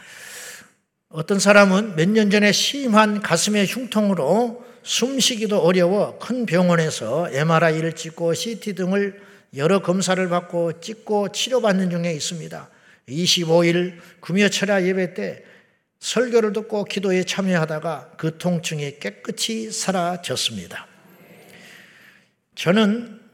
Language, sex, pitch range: Korean, male, 165-205 Hz